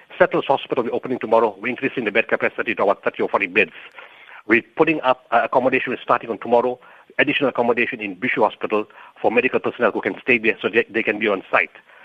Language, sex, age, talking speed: English, male, 50-69, 210 wpm